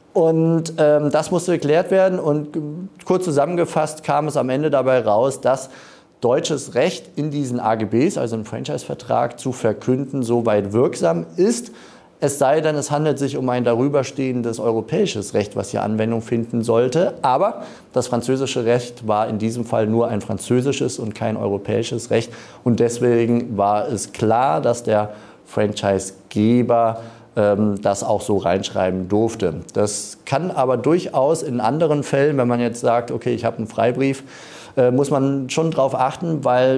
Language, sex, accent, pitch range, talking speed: German, male, German, 110-140 Hz, 155 wpm